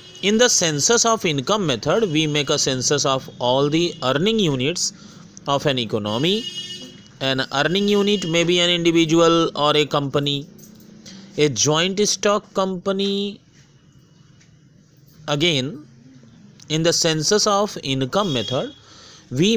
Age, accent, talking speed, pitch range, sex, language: 30-49, native, 125 wpm, 135-180 Hz, male, Hindi